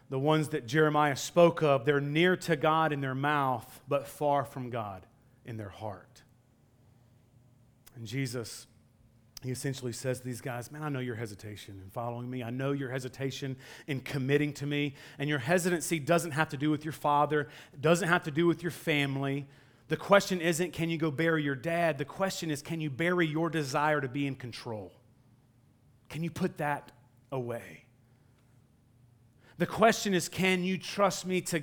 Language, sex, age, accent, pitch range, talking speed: English, male, 30-49, American, 120-155 Hz, 180 wpm